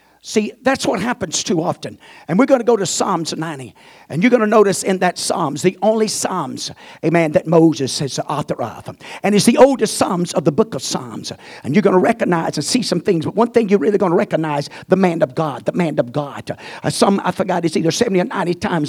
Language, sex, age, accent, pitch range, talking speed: English, male, 50-69, American, 160-230 Hz, 245 wpm